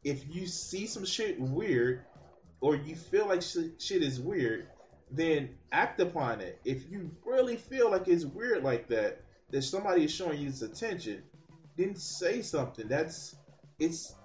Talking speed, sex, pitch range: 160 wpm, male, 130-170 Hz